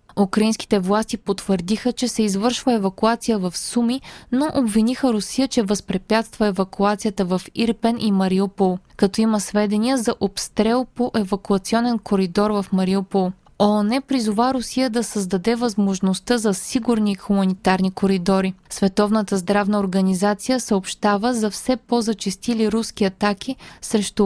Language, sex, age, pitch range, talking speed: Bulgarian, female, 20-39, 195-235 Hz, 120 wpm